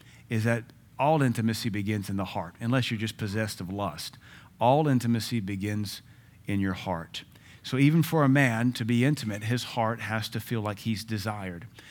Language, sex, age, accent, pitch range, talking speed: English, male, 40-59, American, 110-135 Hz, 180 wpm